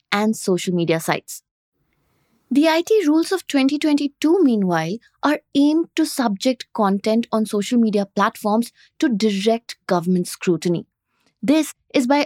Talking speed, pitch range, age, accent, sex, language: 125 wpm, 200-285 Hz, 20-39, Indian, female, English